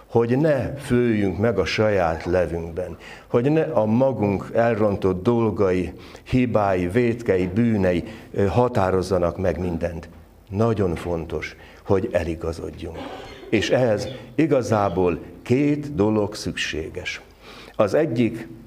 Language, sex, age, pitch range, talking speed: Hungarian, male, 60-79, 100-125 Hz, 100 wpm